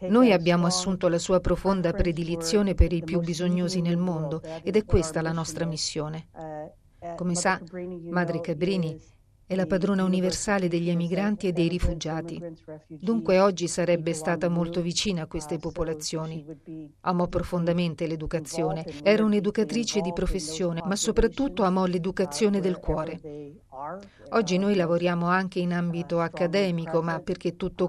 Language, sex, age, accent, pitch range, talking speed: Italian, female, 40-59, native, 165-195 Hz, 140 wpm